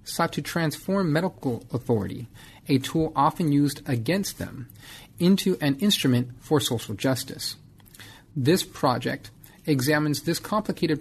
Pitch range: 125-155 Hz